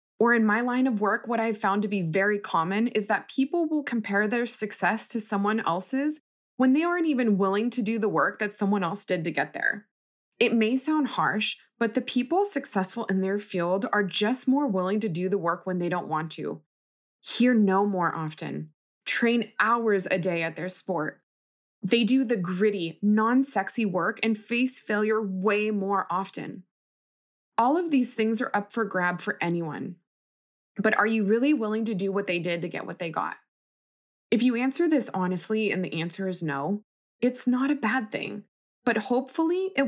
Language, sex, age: English, female, 20-39